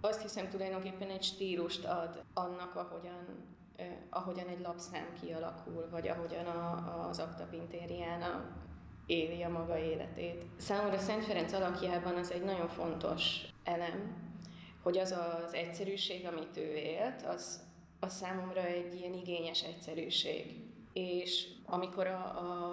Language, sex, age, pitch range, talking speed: Hungarian, female, 20-39, 165-180 Hz, 130 wpm